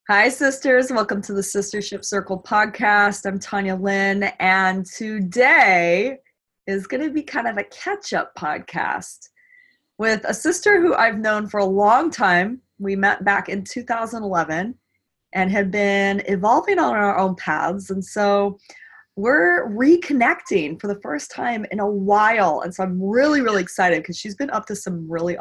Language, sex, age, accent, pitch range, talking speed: English, female, 20-39, American, 180-225 Hz, 165 wpm